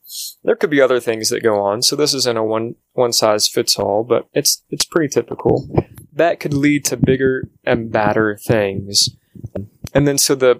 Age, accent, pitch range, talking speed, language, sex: 20-39, American, 110-130 Hz, 195 wpm, English, male